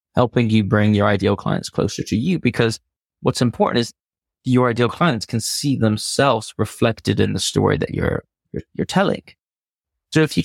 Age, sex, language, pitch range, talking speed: 30-49, male, English, 105-130 Hz, 180 wpm